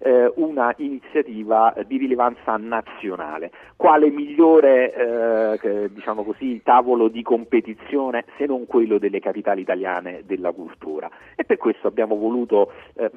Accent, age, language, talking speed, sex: native, 40-59, Italian, 125 wpm, male